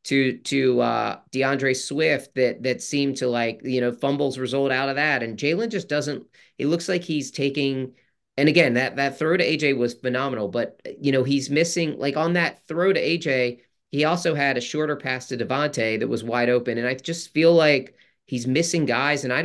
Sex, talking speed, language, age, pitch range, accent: male, 220 wpm, English, 30-49, 120-140 Hz, American